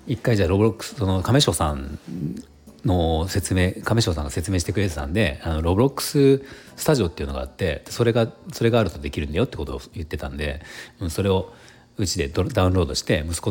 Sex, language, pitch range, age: male, Japanese, 80-115 Hz, 40-59